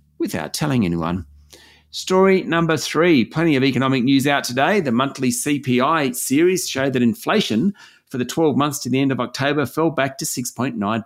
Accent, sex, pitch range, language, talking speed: Australian, male, 115-175 Hz, English, 175 wpm